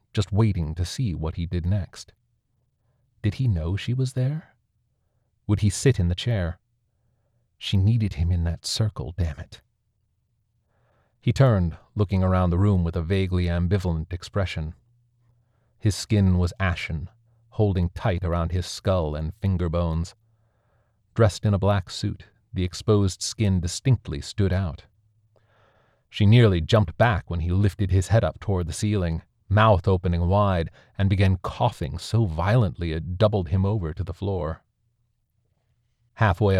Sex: male